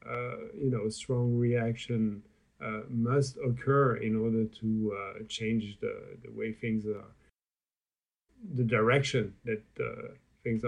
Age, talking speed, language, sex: 50-69, 130 wpm, English, male